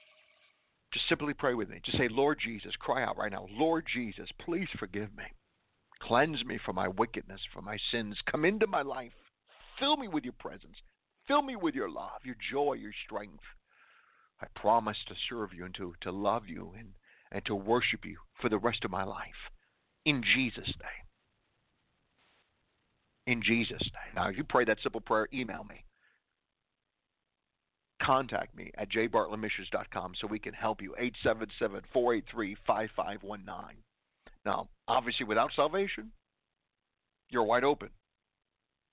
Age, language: 50-69, English